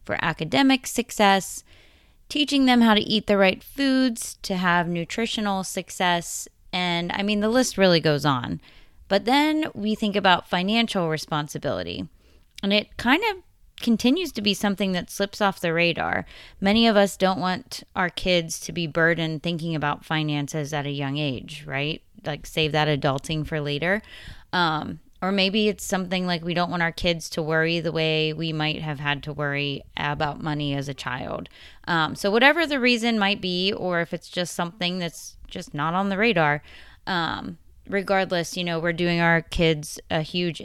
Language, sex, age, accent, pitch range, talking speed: English, female, 20-39, American, 155-200 Hz, 175 wpm